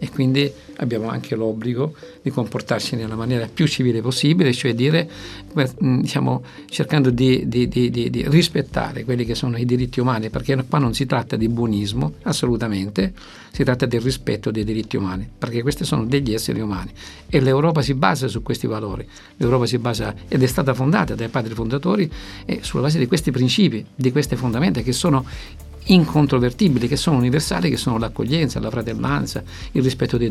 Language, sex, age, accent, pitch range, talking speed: Italian, male, 50-69, native, 115-145 Hz, 175 wpm